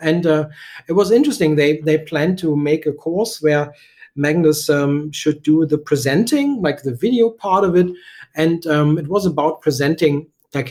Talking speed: 180 wpm